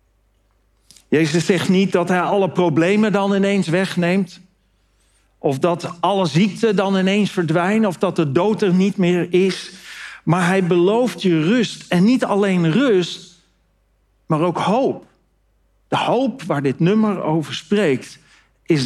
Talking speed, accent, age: 145 wpm, Dutch, 50-69